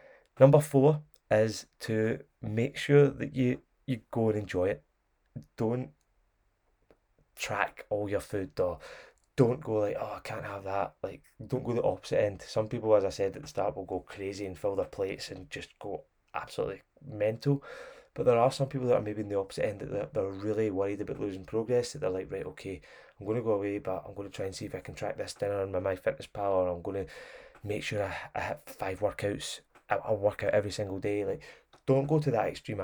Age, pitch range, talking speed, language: 20-39, 100-130 Hz, 220 wpm, English